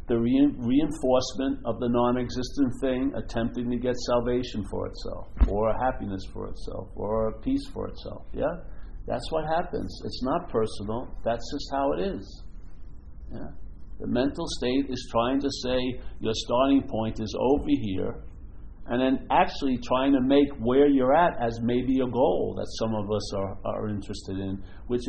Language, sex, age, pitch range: English, male, 50-69, 110-165 Hz